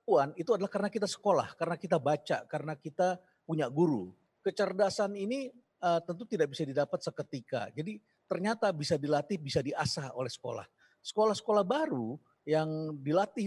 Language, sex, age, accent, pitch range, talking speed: English, male, 40-59, Indonesian, 150-195 Hz, 145 wpm